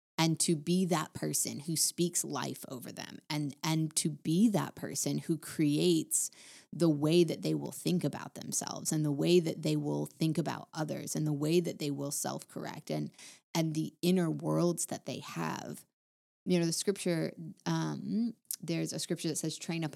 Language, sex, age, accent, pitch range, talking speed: English, female, 30-49, American, 145-170 Hz, 185 wpm